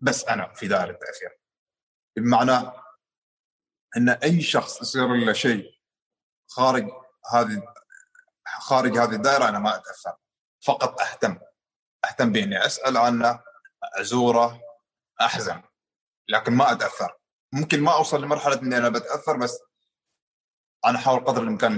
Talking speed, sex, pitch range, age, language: 120 wpm, male, 115-155 Hz, 30-49, Arabic